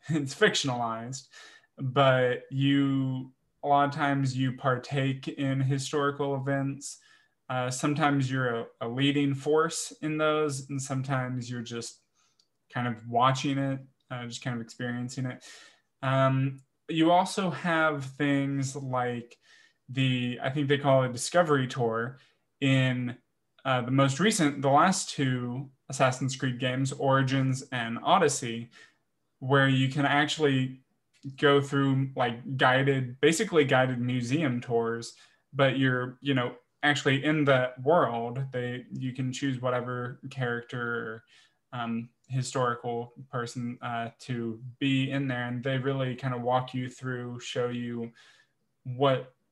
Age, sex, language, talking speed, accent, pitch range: 20-39, male, English, 130 wpm, American, 125-140 Hz